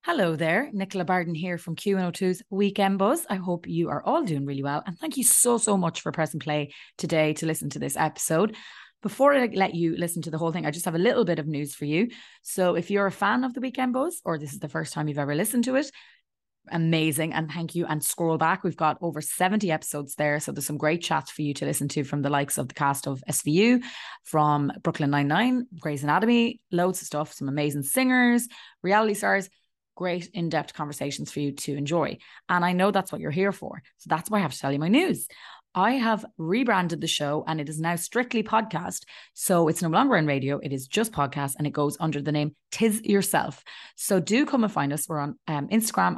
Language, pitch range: English, 150-200 Hz